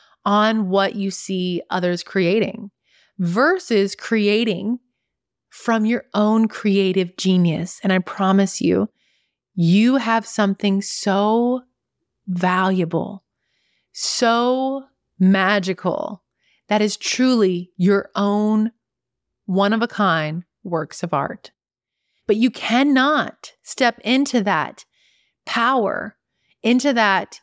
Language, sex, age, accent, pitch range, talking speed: English, female, 30-49, American, 195-235 Hz, 90 wpm